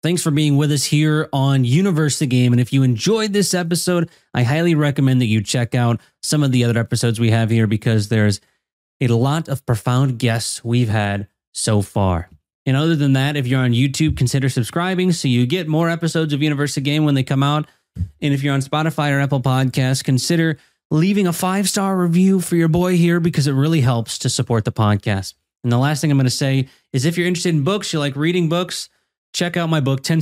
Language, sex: English, male